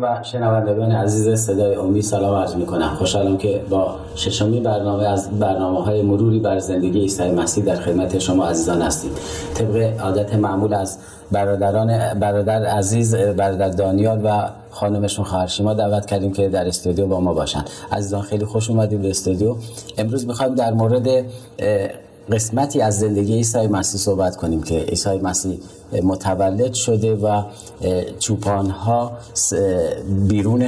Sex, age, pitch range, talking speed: male, 40-59, 95-110 Hz, 140 wpm